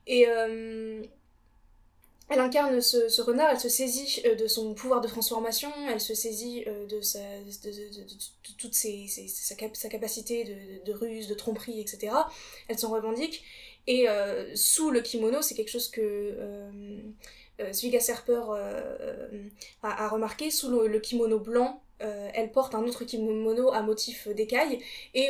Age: 20-39